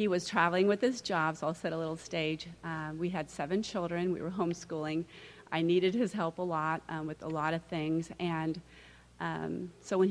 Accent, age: American, 40-59